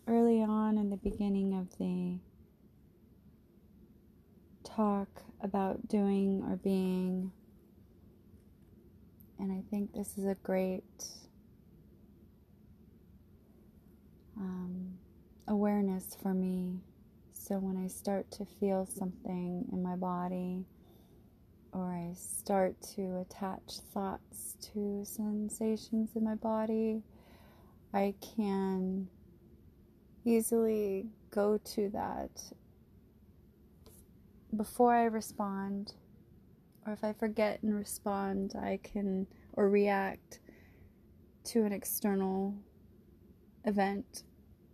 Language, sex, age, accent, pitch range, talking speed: English, female, 30-49, American, 185-210 Hz, 90 wpm